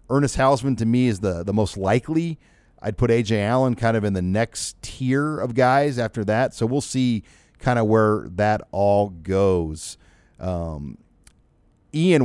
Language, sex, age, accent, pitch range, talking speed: English, male, 40-59, American, 95-125 Hz, 165 wpm